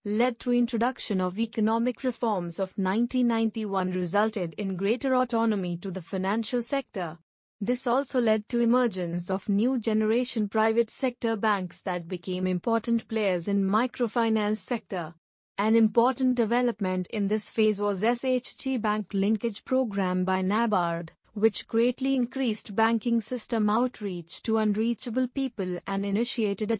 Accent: Indian